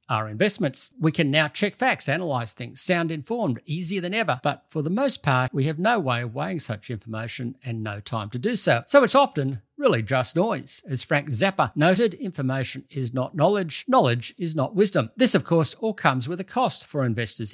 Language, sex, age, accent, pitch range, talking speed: English, male, 50-69, Australian, 115-165 Hz, 210 wpm